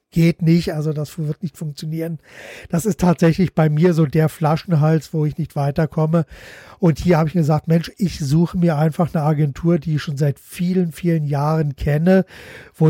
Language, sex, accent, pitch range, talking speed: German, male, German, 155-175 Hz, 185 wpm